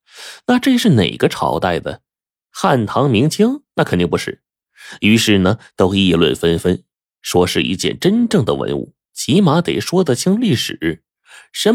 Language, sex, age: Chinese, male, 20-39